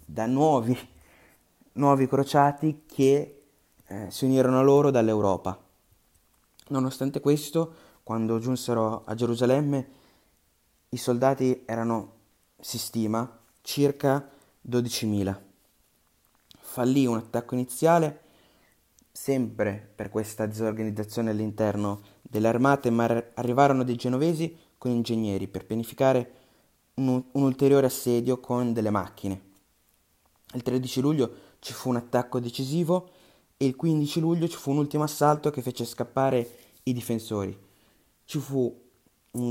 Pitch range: 110-135 Hz